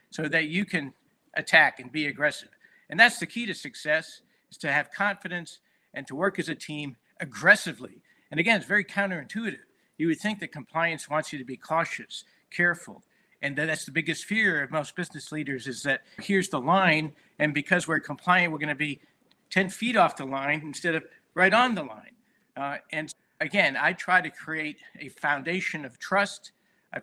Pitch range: 150-190 Hz